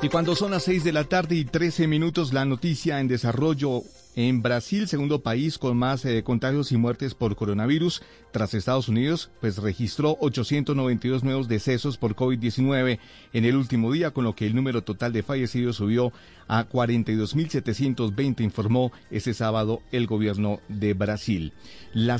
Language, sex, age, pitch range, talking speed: Spanish, male, 40-59, 110-140 Hz, 160 wpm